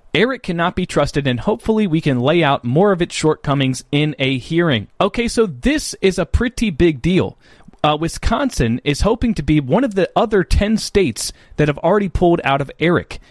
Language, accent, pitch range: English, American, 135-195 Hz